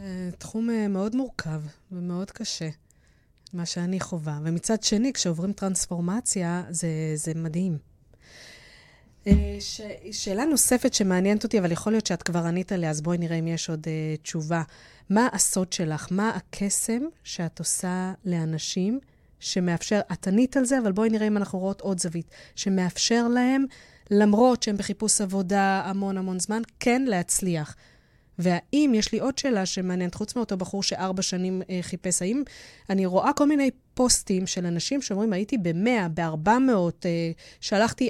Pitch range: 175-220 Hz